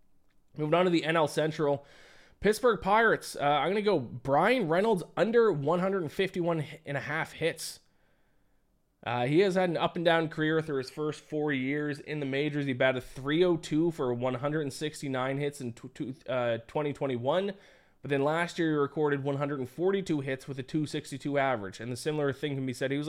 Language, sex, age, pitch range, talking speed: English, male, 20-39, 125-160 Hz, 180 wpm